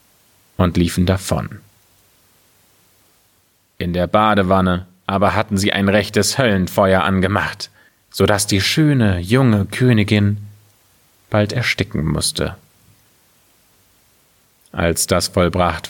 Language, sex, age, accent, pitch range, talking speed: German, male, 30-49, German, 95-110 Hz, 95 wpm